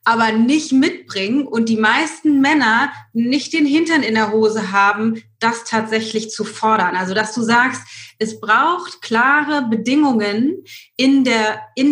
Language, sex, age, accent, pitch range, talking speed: German, female, 30-49, German, 225-295 Hz, 145 wpm